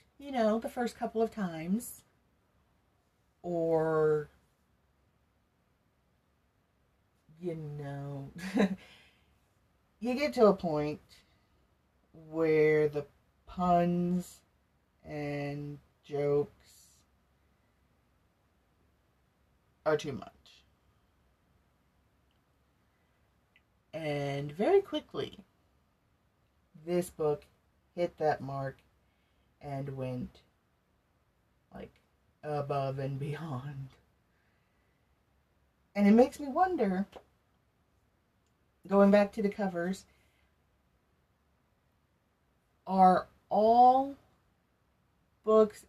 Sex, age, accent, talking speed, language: female, 40-59, American, 65 wpm, English